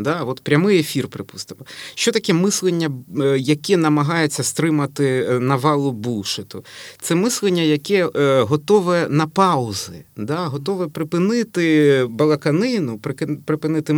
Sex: male